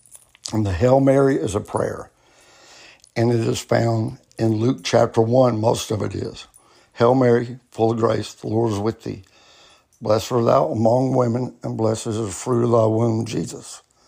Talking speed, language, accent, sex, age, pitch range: 185 wpm, English, American, male, 60-79, 115-135 Hz